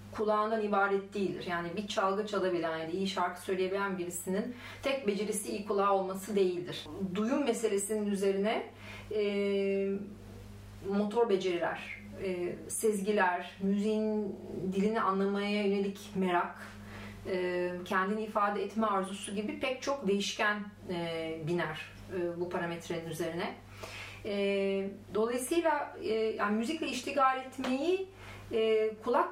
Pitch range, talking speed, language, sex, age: 175-220 Hz, 110 wpm, Turkish, female, 40-59